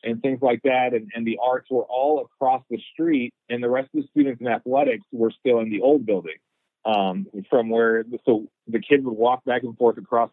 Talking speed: 225 wpm